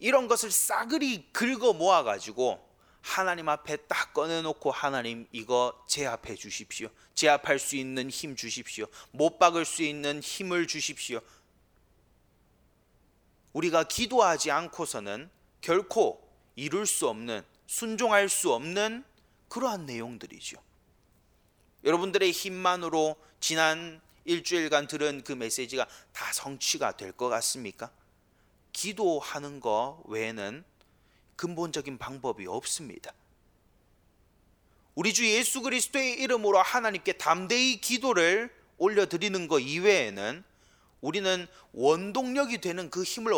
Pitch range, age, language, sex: 135-205 Hz, 30-49, Korean, male